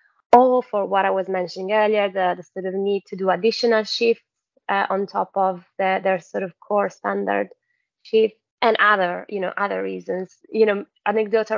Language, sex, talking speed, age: English, female, 180 wpm, 20-39